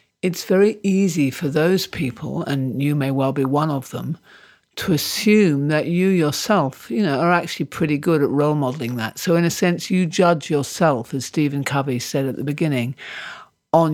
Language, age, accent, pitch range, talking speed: English, 50-69, British, 135-170 Hz, 190 wpm